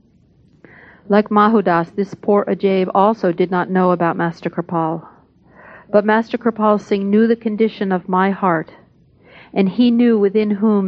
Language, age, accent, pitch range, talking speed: English, 50-69, American, 180-210 Hz, 150 wpm